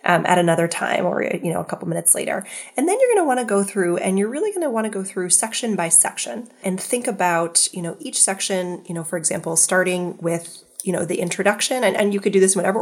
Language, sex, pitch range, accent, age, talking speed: English, female, 175-215 Hz, American, 20-39, 265 wpm